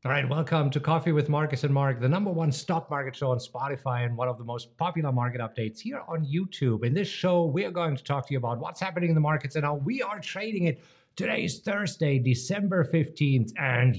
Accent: German